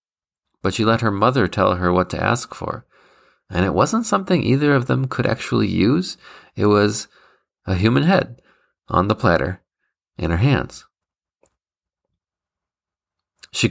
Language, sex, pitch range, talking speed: English, male, 85-110 Hz, 145 wpm